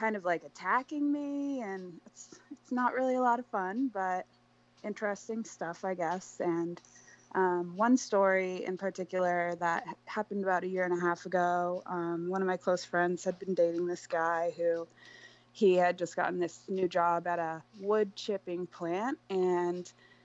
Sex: female